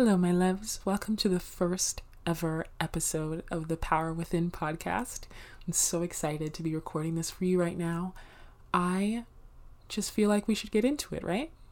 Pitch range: 160-185 Hz